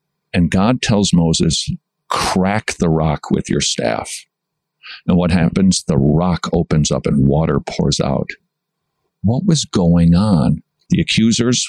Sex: male